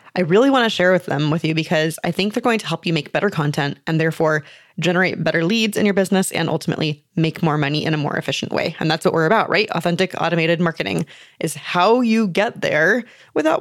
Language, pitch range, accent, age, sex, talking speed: English, 160-200 Hz, American, 20-39, female, 235 wpm